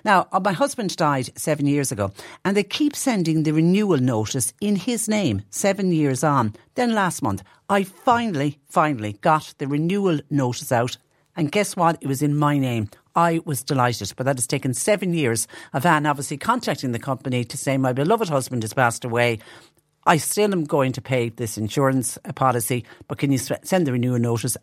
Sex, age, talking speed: female, 50-69, 190 wpm